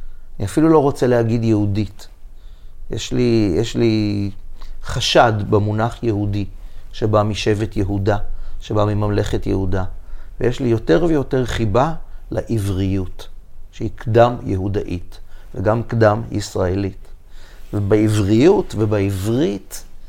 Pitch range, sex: 95-115 Hz, male